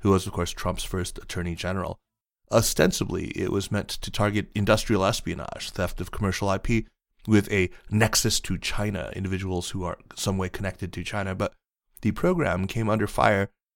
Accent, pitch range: American, 95-110 Hz